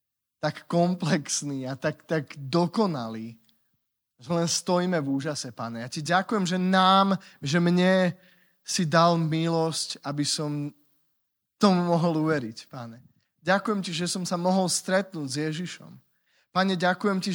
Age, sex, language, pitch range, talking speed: 20-39, male, Slovak, 150-185 Hz, 140 wpm